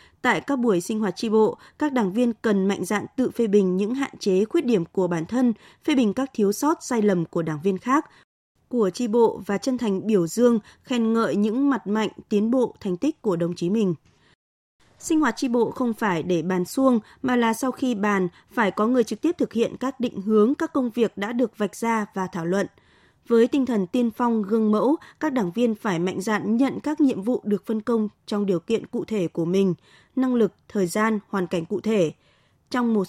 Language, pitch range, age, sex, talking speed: Vietnamese, 200-245 Hz, 20-39, female, 230 wpm